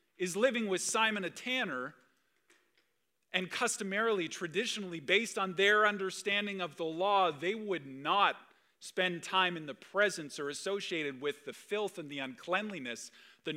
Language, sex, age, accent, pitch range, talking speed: English, male, 40-59, American, 165-205 Hz, 145 wpm